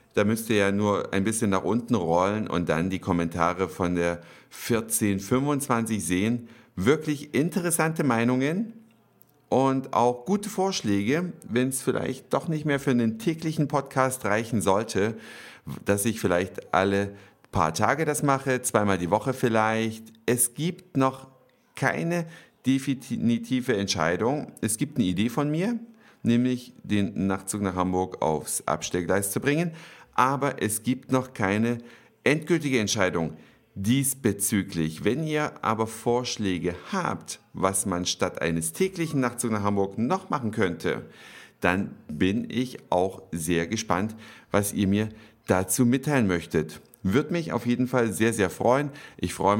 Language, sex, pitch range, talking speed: German, male, 100-135 Hz, 140 wpm